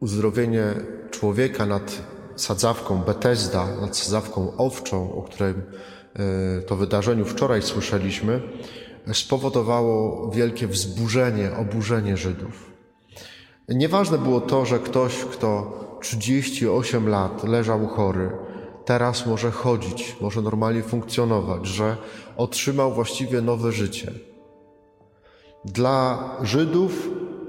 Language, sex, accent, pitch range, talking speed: Polish, male, native, 105-125 Hz, 90 wpm